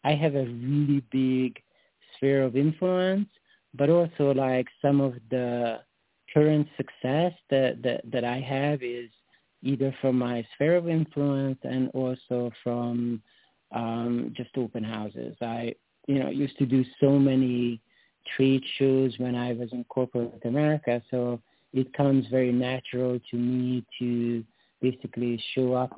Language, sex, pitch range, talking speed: English, male, 120-135 Hz, 145 wpm